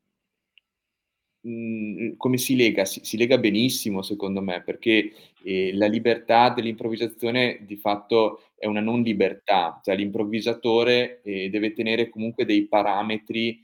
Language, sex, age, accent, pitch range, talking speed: Italian, male, 20-39, native, 100-115 Hz, 125 wpm